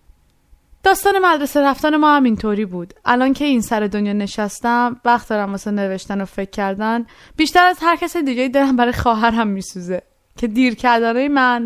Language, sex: Persian, female